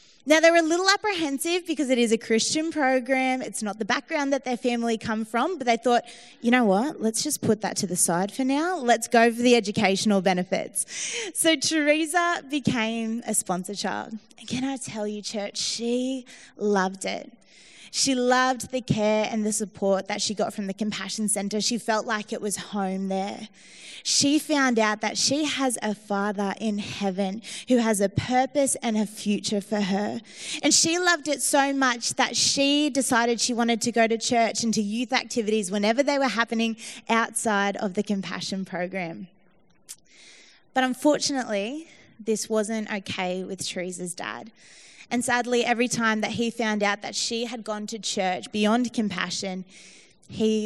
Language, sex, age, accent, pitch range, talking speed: English, female, 20-39, Australian, 200-245 Hz, 180 wpm